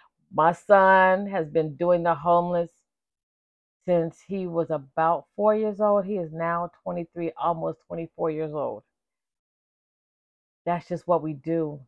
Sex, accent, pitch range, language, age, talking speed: female, American, 160-190 Hz, English, 40-59, 135 wpm